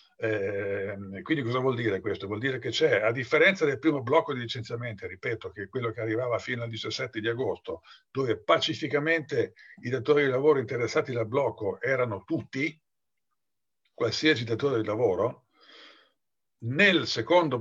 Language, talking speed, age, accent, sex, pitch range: Italian, 155 wpm, 50-69, native, male, 115-155 Hz